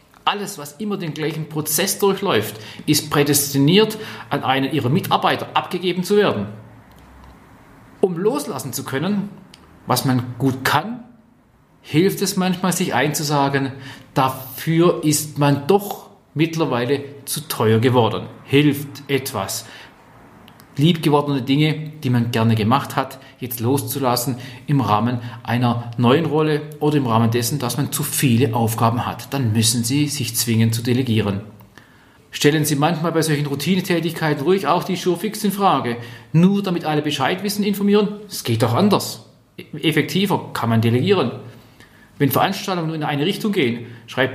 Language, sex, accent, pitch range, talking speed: German, male, German, 120-160 Hz, 140 wpm